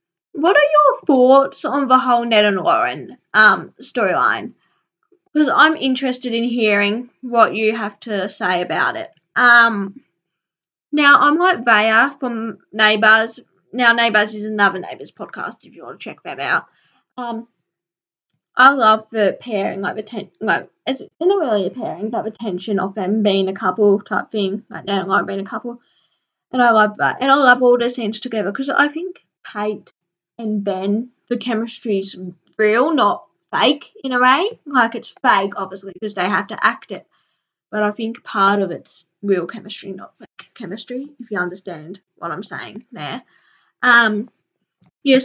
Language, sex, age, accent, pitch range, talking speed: English, female, 10-29, Australian, 200-250 Hz, 175 wpm